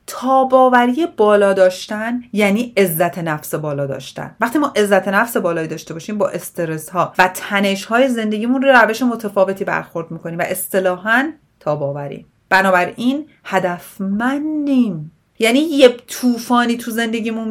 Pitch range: 175-245 Hz